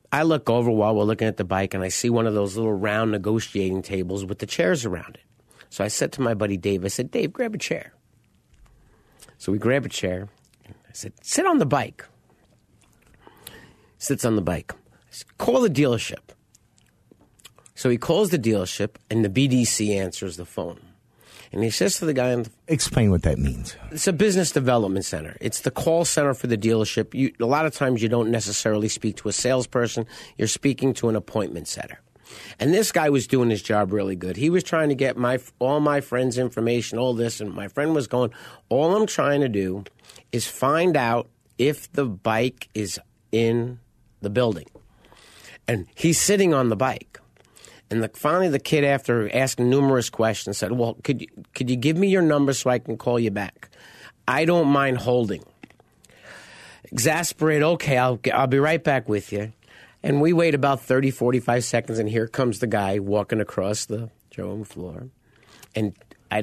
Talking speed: 190 wpm